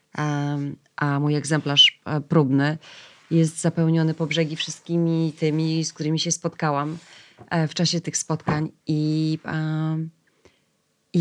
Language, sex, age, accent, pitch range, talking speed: Polish, female, 30-49, native, 140-165 Hz, 105 wpm